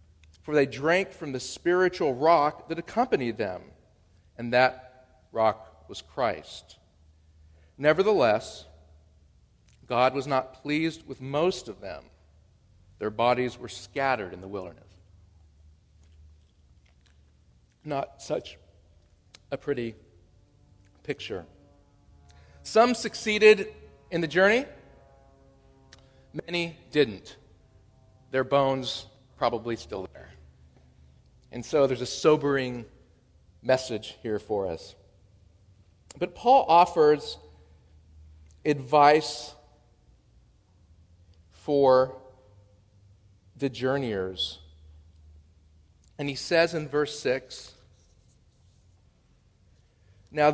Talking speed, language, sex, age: 85 wpm, English, male, 40-59